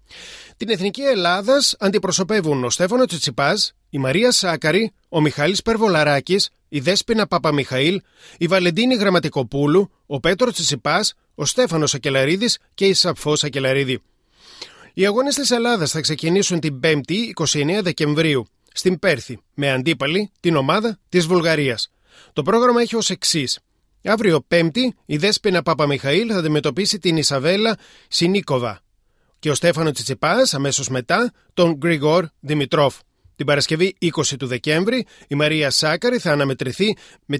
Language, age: Greek, 30-49